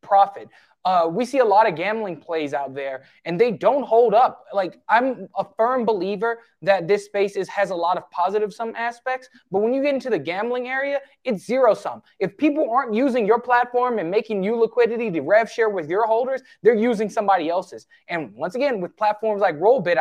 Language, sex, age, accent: English, male, 20-39, American